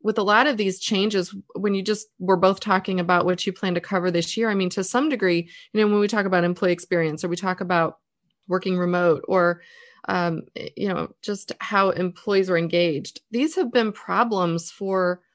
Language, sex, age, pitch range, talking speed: English, female, 30-49, 180-210 Hz, 205 wpm